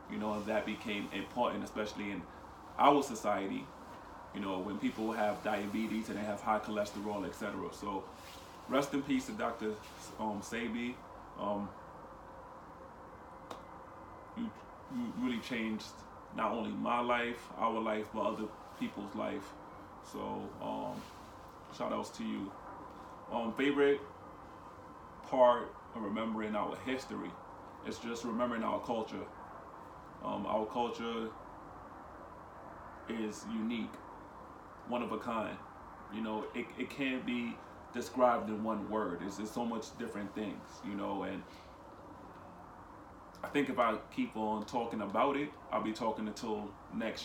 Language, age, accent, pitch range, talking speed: English, 20-39, American, 105-125 Hz, 130 wpm